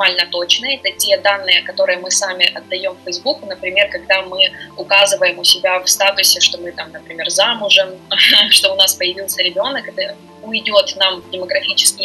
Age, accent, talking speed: 20-39, native, 155 wpm